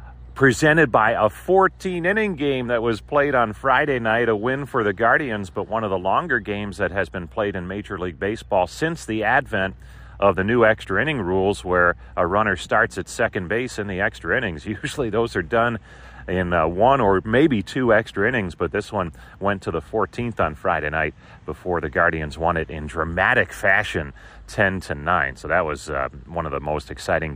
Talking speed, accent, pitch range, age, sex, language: 200 wpm, American, 80-115 Hz, 40-59, male, English